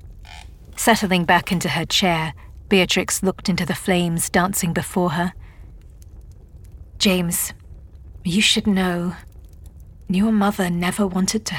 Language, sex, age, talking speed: English, female, 40-59, 115 wpm